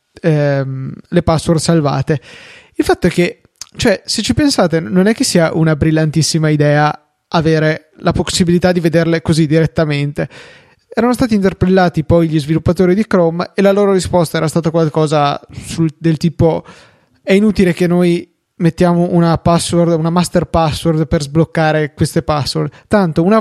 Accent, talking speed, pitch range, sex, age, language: native, 150 wpm, 155-185 Hz, male, 20-39, Italian